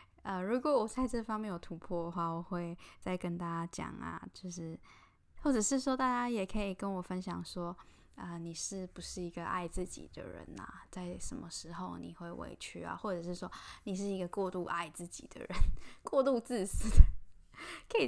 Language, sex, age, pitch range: Chinese, female, 10-29, 170-210 Hz